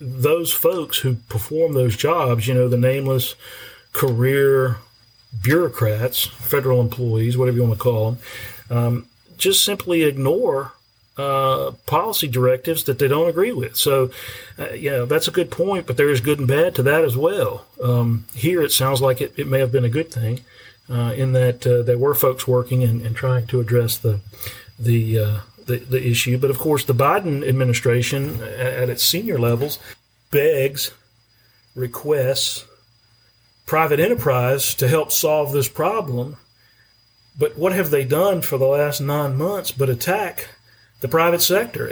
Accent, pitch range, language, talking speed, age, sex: American, 120-145 Hz, English, 165 wpm, 40-59, male